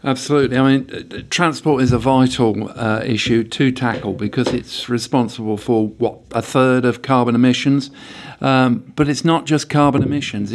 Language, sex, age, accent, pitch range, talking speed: English, male, 50-69, British, 120-135 Hz, 160 wpm